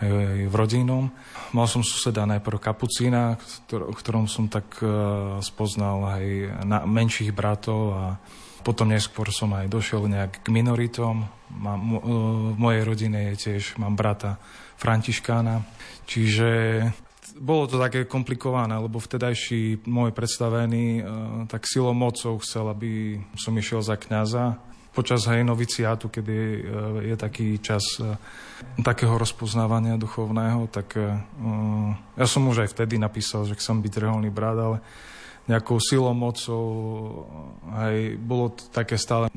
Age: 20-39